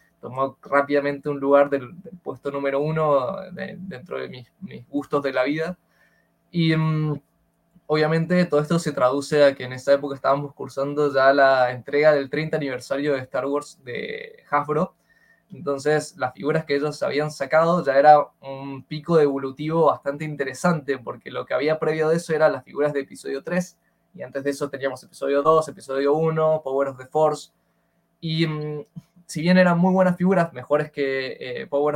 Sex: male